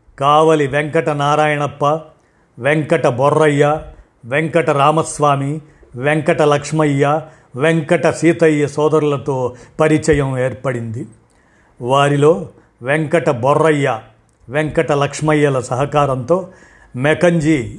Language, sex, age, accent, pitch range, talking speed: Telugu, male, 50-69, native, 135-160 Hz, 70 wpm